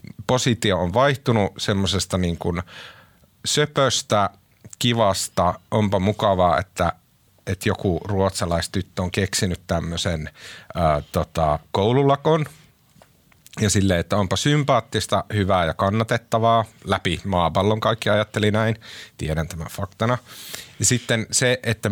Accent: native